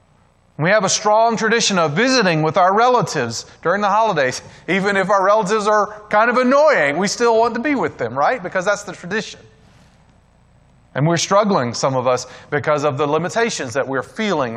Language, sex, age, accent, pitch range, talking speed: English, male, 30-49, American, 120-195 Hz, 190 wpm